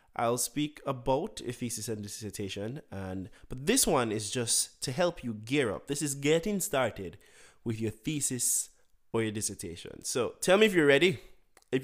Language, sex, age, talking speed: English, male, 20-39, 175 wpm